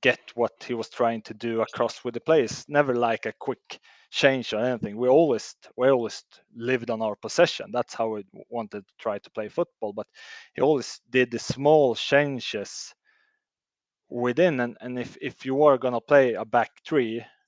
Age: 30-49